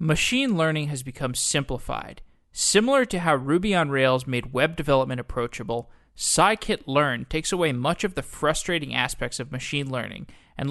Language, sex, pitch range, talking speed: English, male, 130-170 Hz, 150 wpm